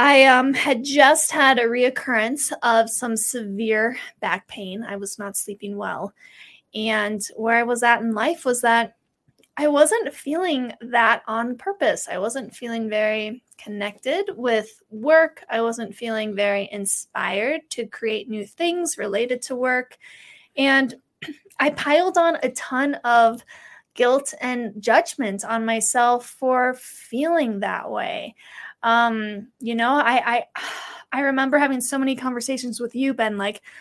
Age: 20-39